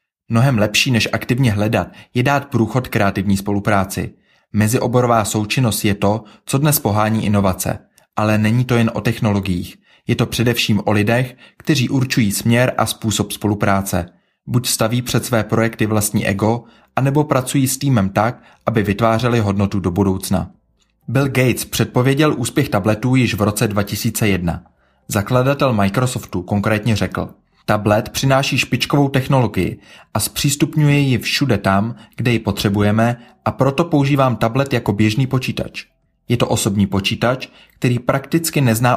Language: Czech